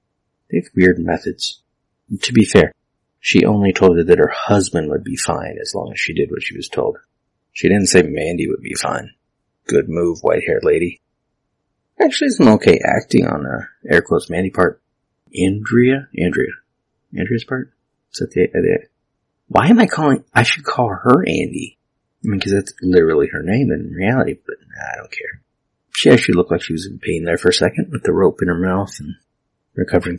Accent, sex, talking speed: American, male, 185 wpm